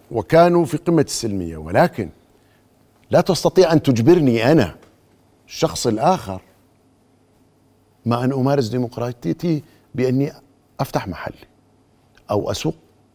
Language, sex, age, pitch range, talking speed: Arabic, male, 50-69, 95-140 Hz, 95 wpm